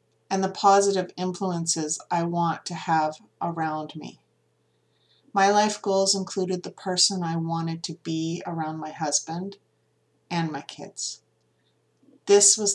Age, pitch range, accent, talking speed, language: 40-59, 160-195 Hz, American, 130 wpm, English